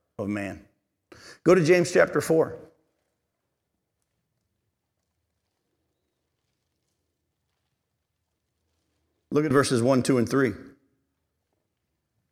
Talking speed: 70 wpm